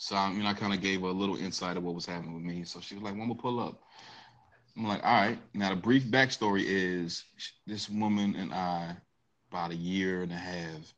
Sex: male